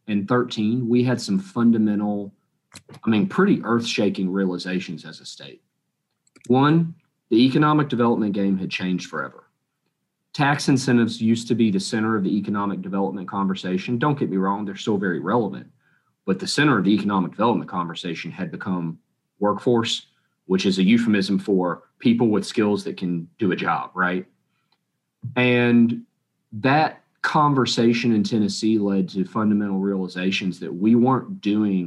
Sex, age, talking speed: male, 40-59, 150 wpm